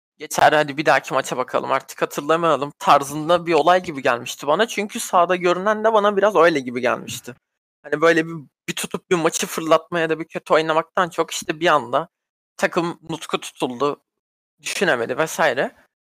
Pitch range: 145-195 Hz